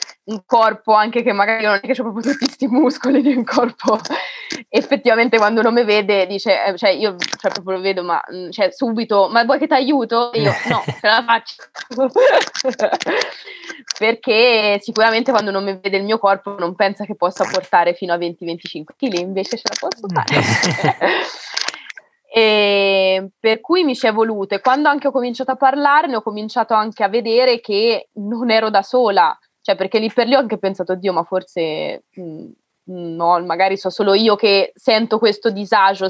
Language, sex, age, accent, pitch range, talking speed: Italian, female, 20-39, native, 190-235 Hz, 180 wpm